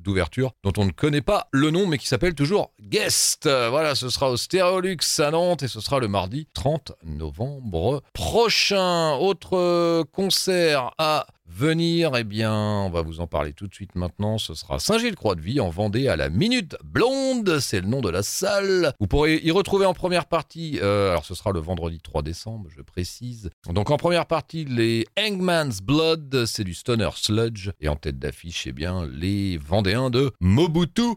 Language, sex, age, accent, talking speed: French, male, 40-59, French, 185 wpm